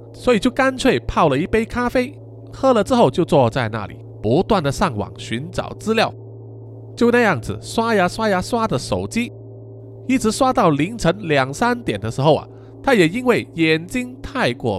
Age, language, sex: 20-39, Chinese, male